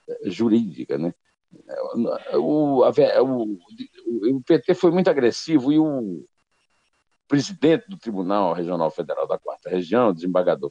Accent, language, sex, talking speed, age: Brazilian, Portuguese, male, 120 wpm, 60-79